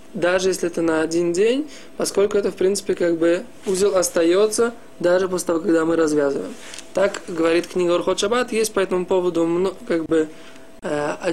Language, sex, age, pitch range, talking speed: Russian, male, 20-39, 165-200 Hz, 170 wpm